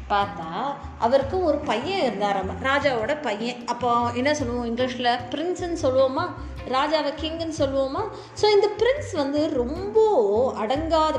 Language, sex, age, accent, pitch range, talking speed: Tamil, female, 20-39, native, 230-310 Hz, 120 wpm